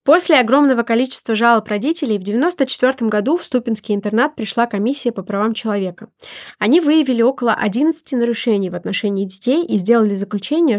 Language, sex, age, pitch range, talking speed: Russian, female, 20-39, 205-245 Hz, 150 wpm